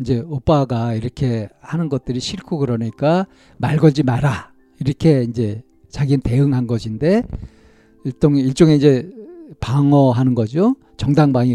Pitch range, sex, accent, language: 115-150 Hz, male, native, Korean